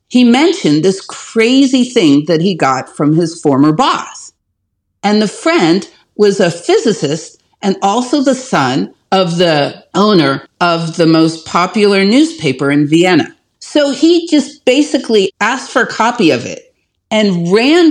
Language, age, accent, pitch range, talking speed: English, 50-69, American, 180-265 Hz, 145 wpm